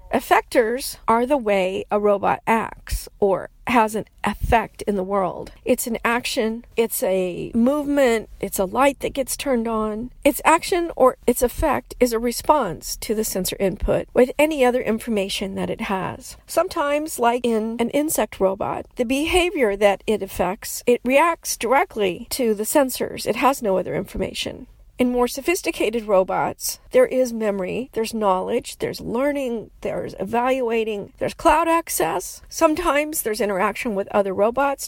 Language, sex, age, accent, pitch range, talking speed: English, female, 50-69, American, 210-270 Hz, 155 wpm